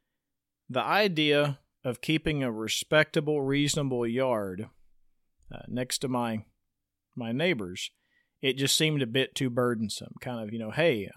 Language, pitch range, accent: English, 115-145 Hz, American